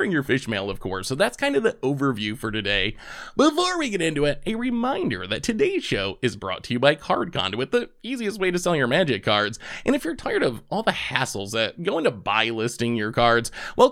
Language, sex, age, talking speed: English, male, 20-39, 235 wpm